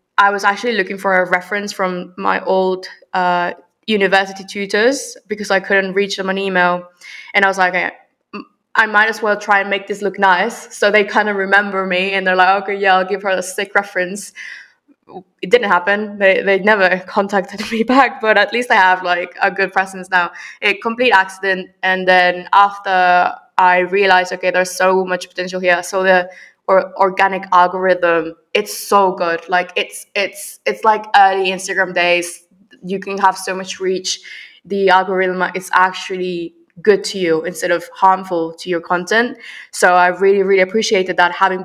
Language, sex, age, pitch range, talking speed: English, female, 20-39, 180-200 Hz, 180 wpm